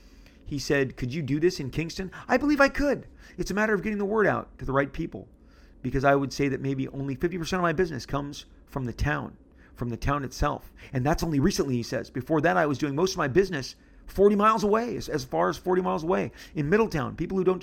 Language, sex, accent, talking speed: English, male, American, 245 wpm